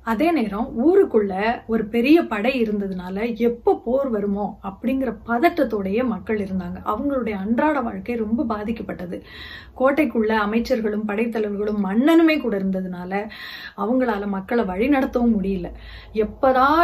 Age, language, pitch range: 30-49, Tamil, 210-270 Hz